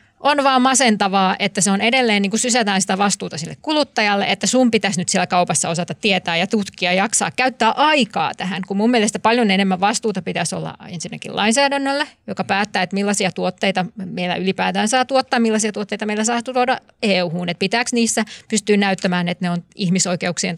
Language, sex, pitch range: Finnish, female, 190-240 Hz